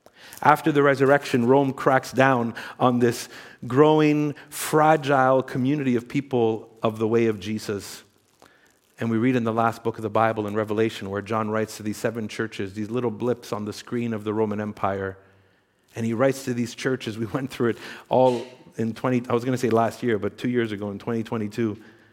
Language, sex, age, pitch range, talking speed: English, male, 50-69, 110-135 Hz, 200 wpm